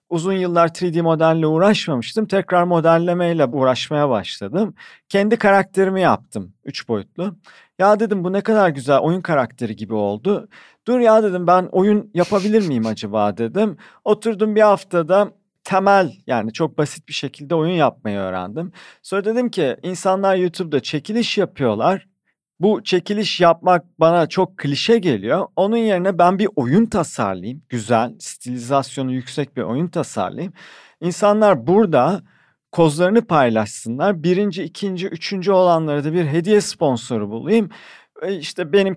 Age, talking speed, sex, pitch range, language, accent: 40-59, 130 wpm, male, 140-205 Hz, Turkish, native